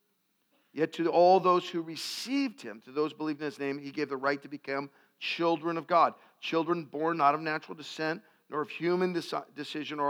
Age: 50-69